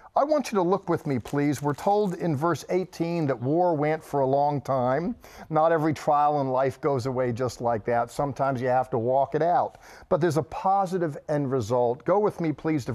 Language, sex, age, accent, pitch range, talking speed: English, male, 50-69, American, 135-175 Hz, 220 wpm